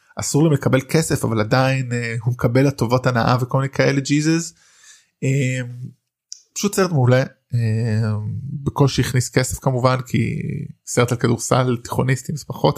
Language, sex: Hebrew, male